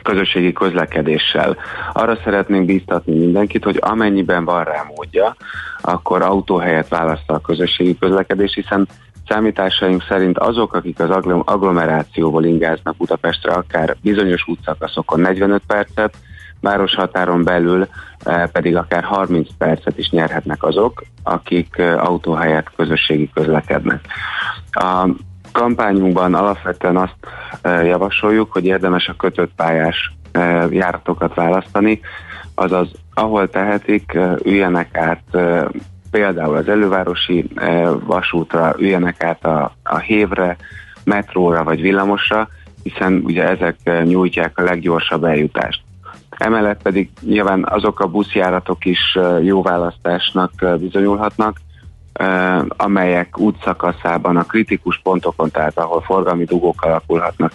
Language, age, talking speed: Hungarian, 30-49, 105 wpm